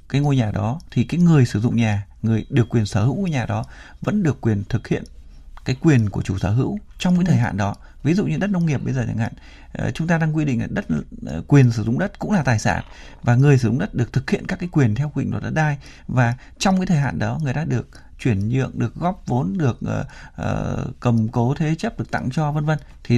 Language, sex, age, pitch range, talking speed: Vietnamese, male, 20-39, 115-155 Hz, 265 wpm